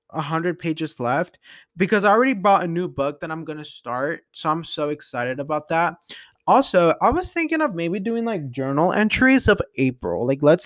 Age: 20-39